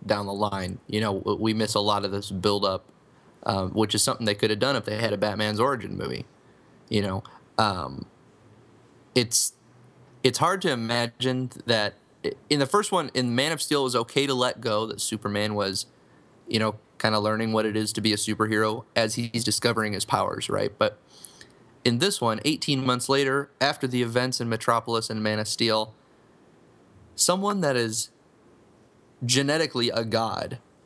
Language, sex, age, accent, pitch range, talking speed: English, male, 20-39, American, 110-130 Hz, 180 wpm